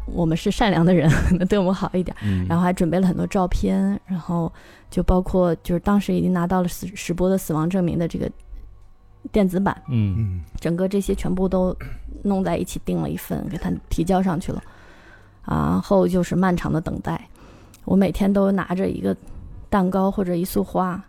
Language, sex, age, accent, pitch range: Chinese, female, 20-39, native, 165-210 Hz